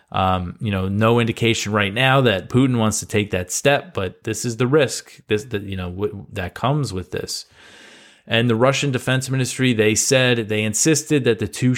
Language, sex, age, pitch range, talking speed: English, male, 20-39, 100-120 Hz, 205 wpm